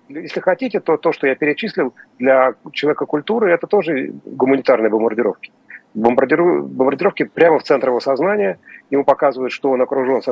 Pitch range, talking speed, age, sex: 125-170 Hz, 150 wpm, 40-59, male